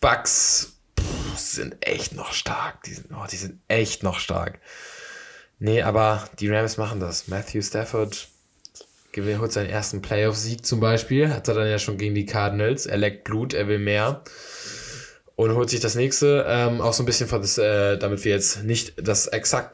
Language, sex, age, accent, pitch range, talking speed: German, male, 10-29, German, 95-110 Hz, 175 wpm